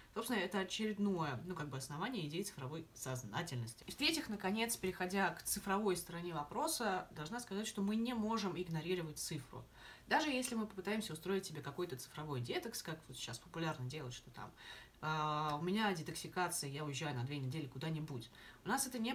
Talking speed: 175 wpm